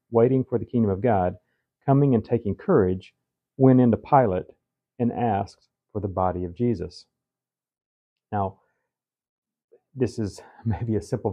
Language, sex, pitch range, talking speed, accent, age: English, male, 100-125 Hz, 140 wpm, American, 40-59